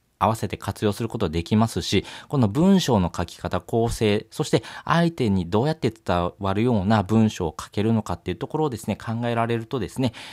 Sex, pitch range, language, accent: male, 100-130 Hz, Japanese, native